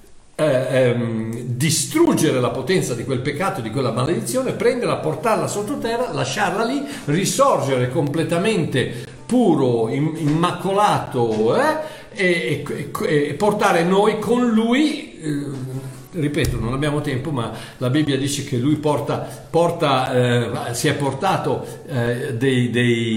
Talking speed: 125 wpm